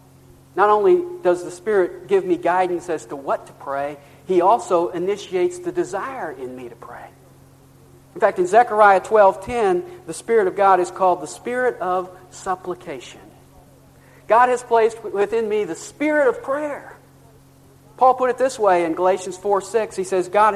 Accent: American